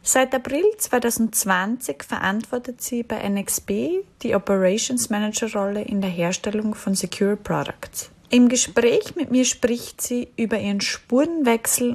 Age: 20-39